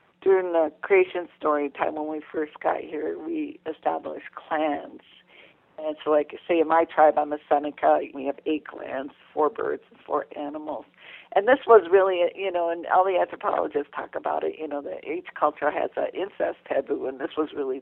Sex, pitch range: female, 155-195 Hz